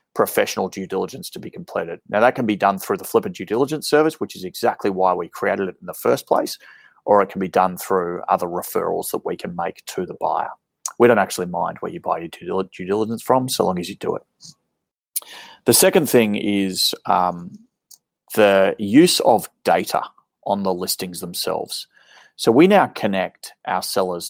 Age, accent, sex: 30-49, Australian, male